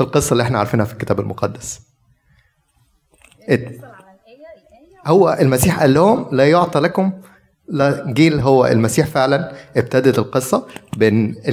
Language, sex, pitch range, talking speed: Arabic, male, 115-155 Hz, 110 wpm